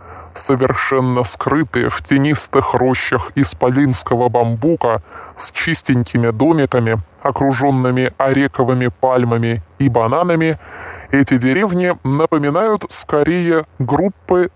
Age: 20-39